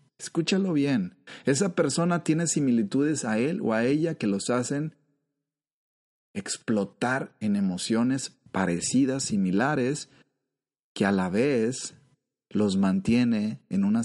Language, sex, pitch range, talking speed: Spanish, male, 105-170 Hz, 115 wpm